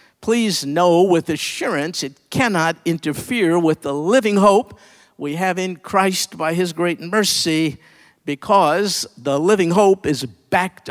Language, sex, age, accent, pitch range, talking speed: English, male, 50-69, American, 150-200 Hz, 140 wpm